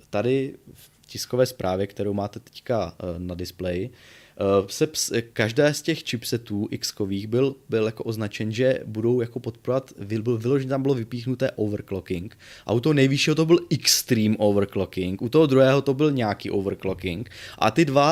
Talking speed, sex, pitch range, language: 155 wpm, male, 100-135 Hz, Czech